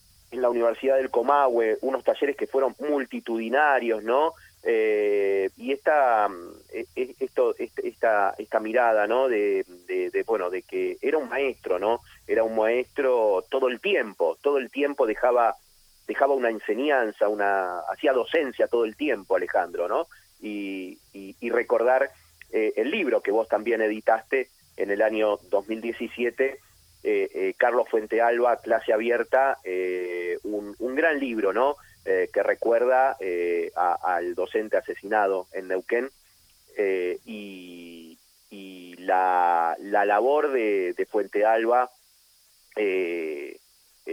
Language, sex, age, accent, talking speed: Spanish, male, 30-49, Argentinian, 135 wpm